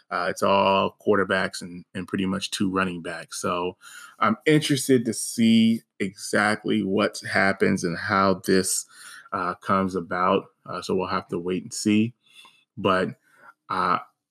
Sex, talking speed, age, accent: male, 145 wpm, 20-39, American